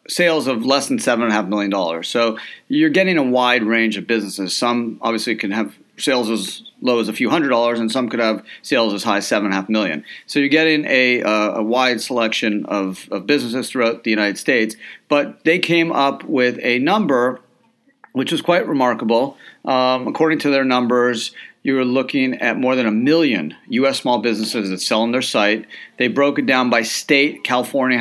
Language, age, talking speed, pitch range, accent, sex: English, 40-59, 210 wpm, 110-135 Hz, American, male